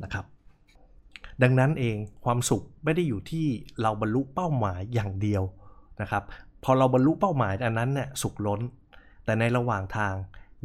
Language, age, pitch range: Thai, 20-39, 100-120 Hz